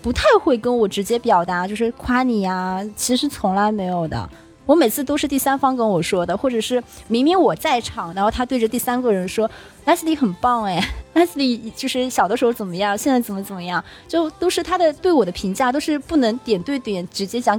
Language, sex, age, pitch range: Chinese, female, 20-39, 205-270 Hz